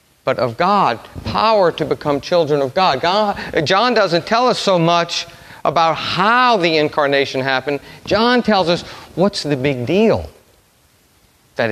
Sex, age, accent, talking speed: male, 50-69, American, 150 wpm